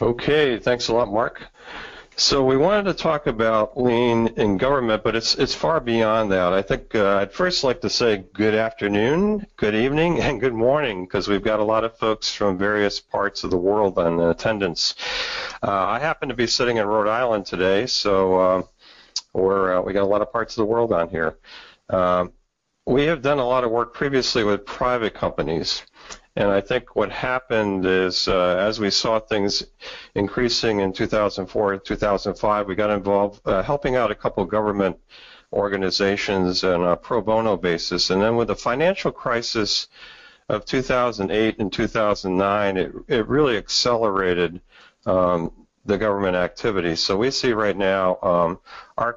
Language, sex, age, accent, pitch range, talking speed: English, male, 40-59, American, 95-115 Hz, 175 wpm